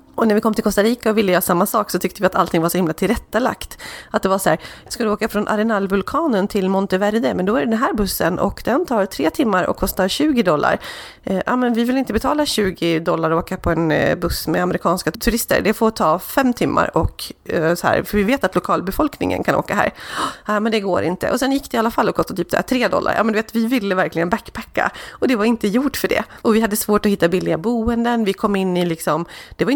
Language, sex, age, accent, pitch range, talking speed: Swedish, female, 30-49, native, 185-230 Hz, 265 wpm